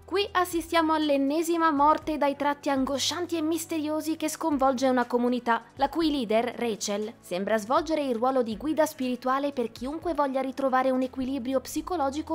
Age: 20-39